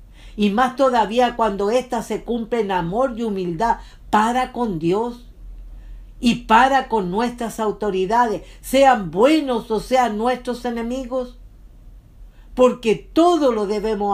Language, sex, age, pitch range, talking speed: English, female, 60-79, 190-250 Hz, 120 wpm